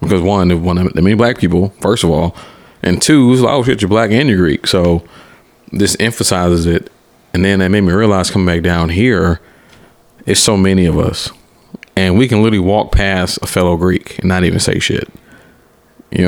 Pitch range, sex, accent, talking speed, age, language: 85-95 Hz, male, American, 220 wpm, 30-49, English